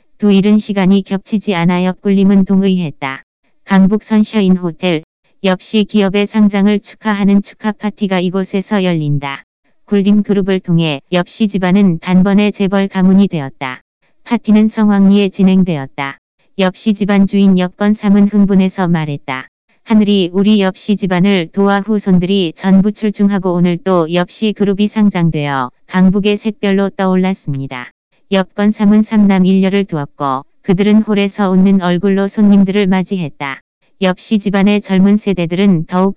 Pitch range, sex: 180-205 Hz, female